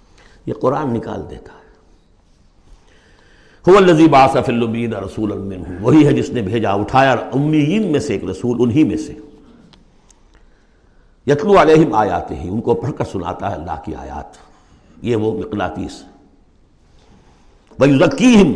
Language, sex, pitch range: Urdu, male, 110-175 Hz